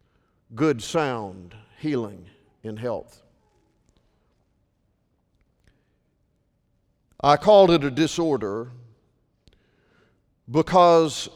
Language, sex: English, male